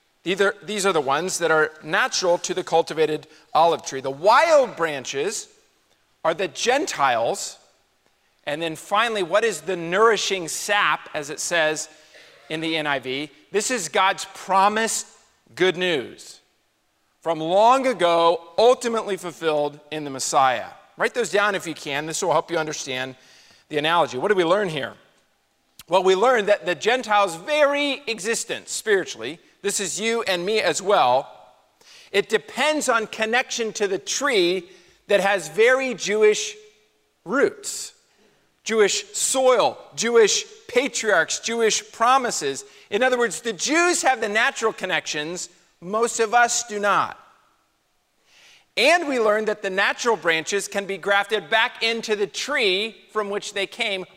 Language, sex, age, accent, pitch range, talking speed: English, male, 40-59, American, 170-250 Hz, 145 wpm